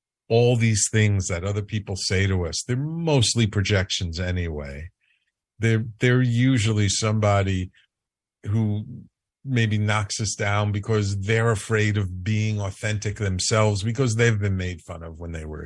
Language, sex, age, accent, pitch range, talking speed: English, male, 50-69, American, 90-110 Hz, 145 wpm